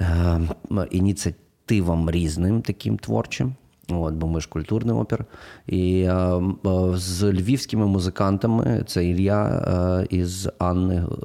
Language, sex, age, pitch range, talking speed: Ukrainian, male, 20-39, 85-100 Hz, 115 wpm